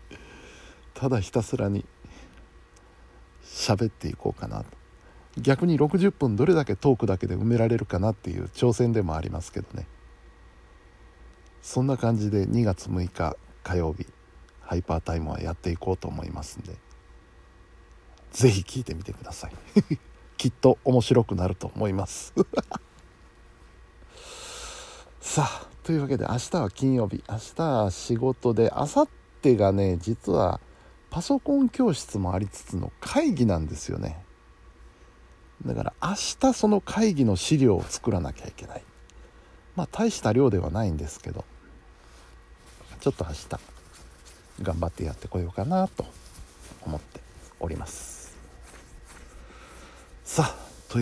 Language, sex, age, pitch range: Japanese, male, 60-79, 85-120 Hz